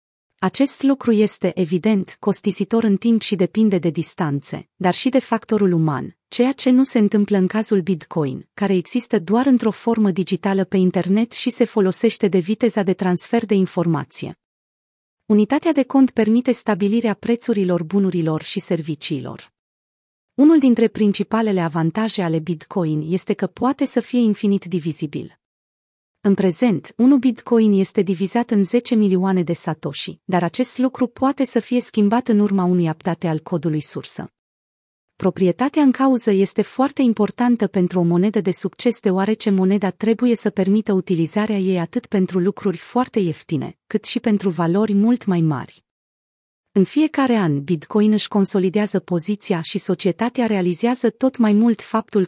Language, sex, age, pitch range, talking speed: Romanian, female, 30-49, 180-225 Hz, 150 wpm